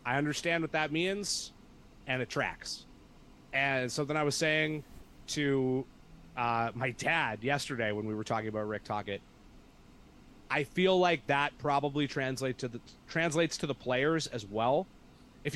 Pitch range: 120-150 Hz